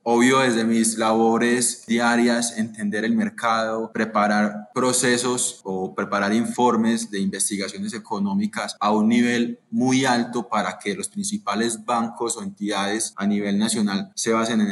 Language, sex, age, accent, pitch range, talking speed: Spanish, male, 20-39, Colombian, 105-120 Hz, 140 wpm